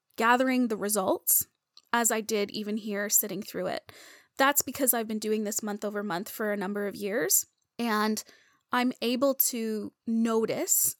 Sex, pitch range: female, 210-265 Hz